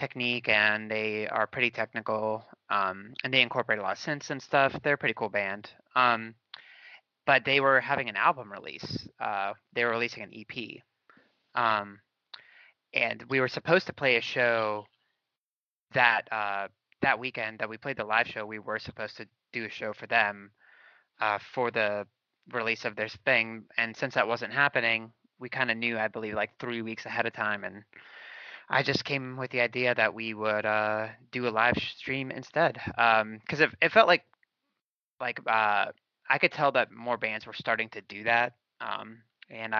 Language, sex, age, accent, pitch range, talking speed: English, male, 30-49, American, 105-130 Hz, 185 wpm